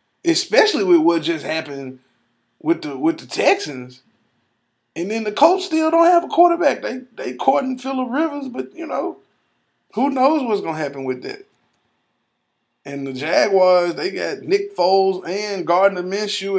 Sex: male